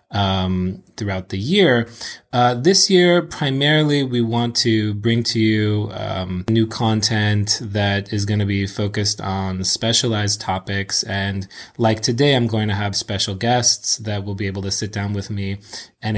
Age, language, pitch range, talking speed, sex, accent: 20-39, English, 100-120 Hz, 165 wpm, male, American